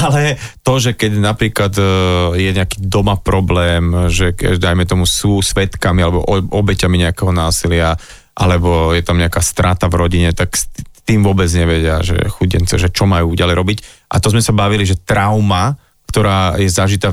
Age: 30-49